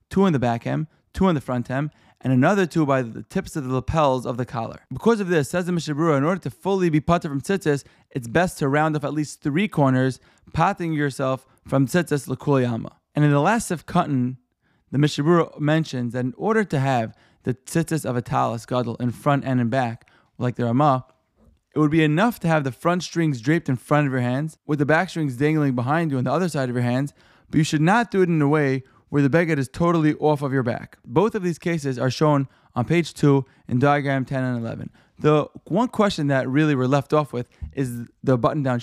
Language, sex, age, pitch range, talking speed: English, male, 20-39, 130-160 Hz, 235 wpm